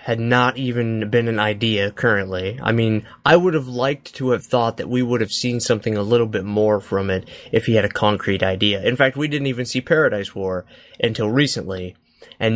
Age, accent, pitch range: 20-39, American, 105-130 Hz